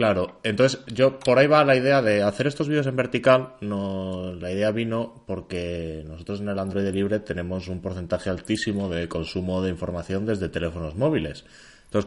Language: Spanish